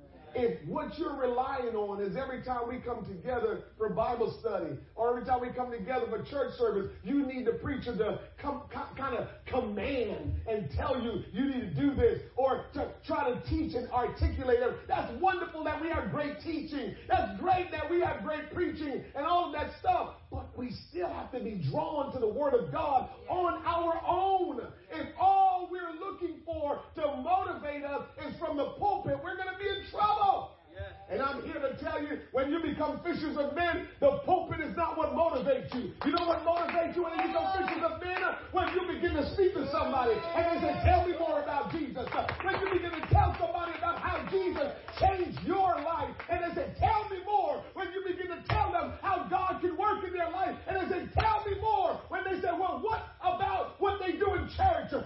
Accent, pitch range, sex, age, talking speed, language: American, 290-380 Hz, male, 40-59, 210 wpm, English